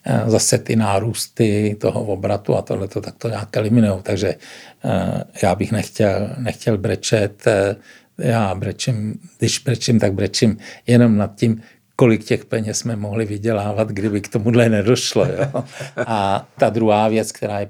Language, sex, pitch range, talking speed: Czech, male, 100-115 Hz, 145 wpm